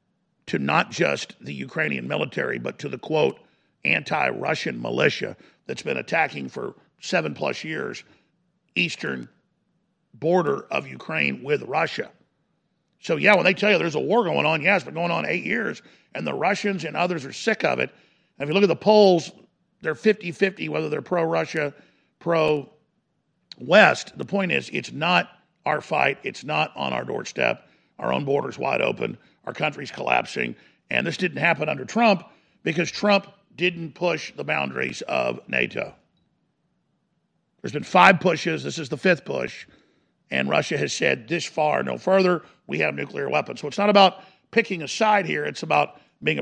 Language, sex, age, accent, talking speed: English, male, 50-69, American, 170 wpm